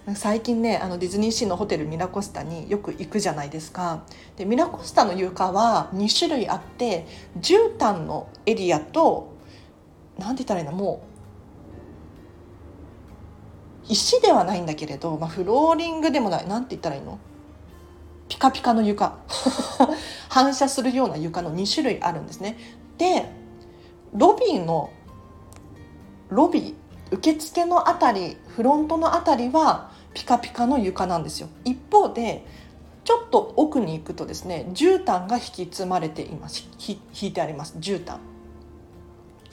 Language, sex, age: Japanese, female, 40-59